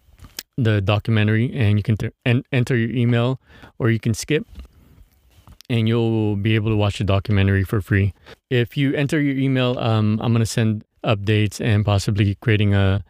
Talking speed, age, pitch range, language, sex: 175 wpm, 20-39, 100-115 Hz, English, male